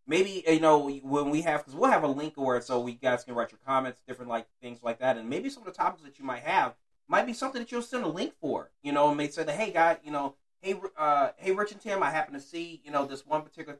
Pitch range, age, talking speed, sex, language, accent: 135-170 Hz, 30-49, 295 wpm, male, English, American